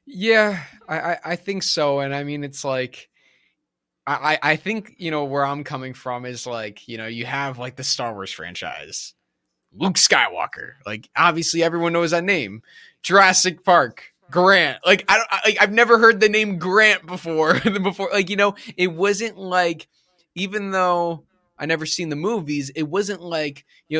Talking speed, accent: 175 wpm, American